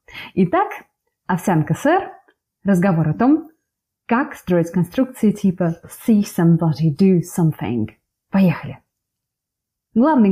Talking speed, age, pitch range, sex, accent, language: 95 wpm, 20-39, 180-280 Hz, female, native, Russian